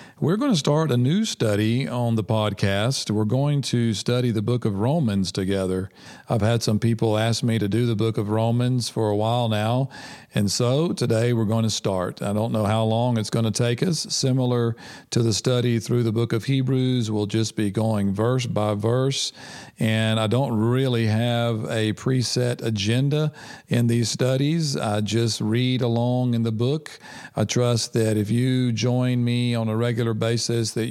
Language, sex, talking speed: English, male, 190 wpm